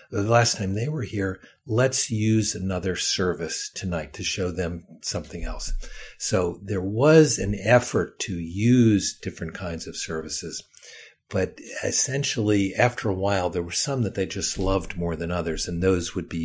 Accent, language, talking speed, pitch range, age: American, English, 170 wpm, 85-110 Hz, 60-79